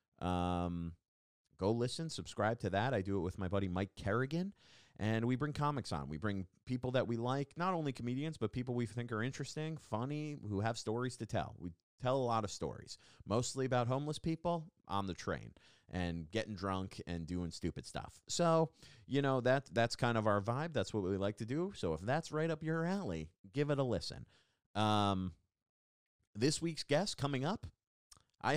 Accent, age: American, 30-49